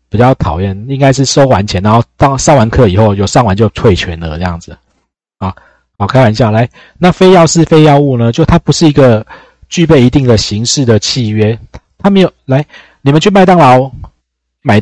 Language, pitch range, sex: Chinese, 100-135 Hz, male